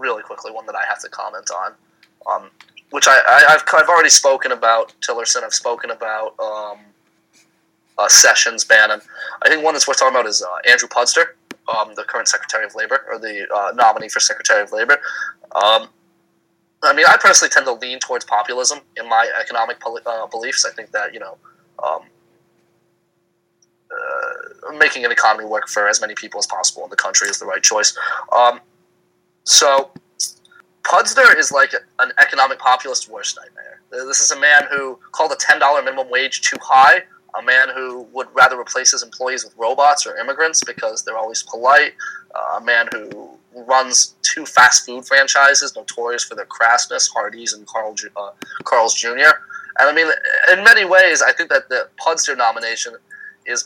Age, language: 20-39, English